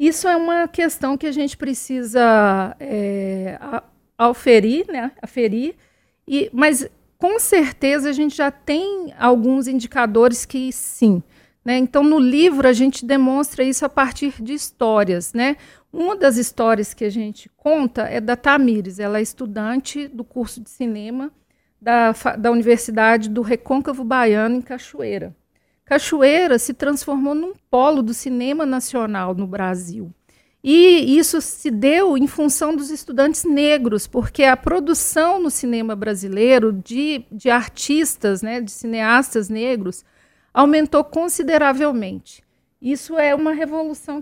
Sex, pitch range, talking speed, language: female, 225-290 Hz, 130 wpm, Portuguese